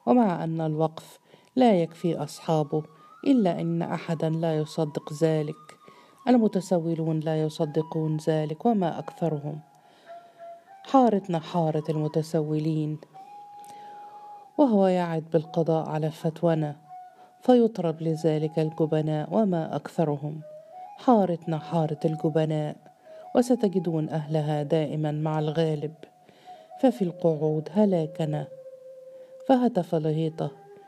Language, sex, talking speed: Arabic, female, 85 wpm